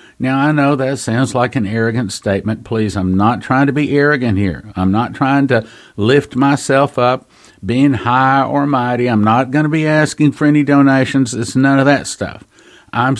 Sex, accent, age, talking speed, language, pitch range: male, American, 50-69, 195 wpm, English, 110-140 Hz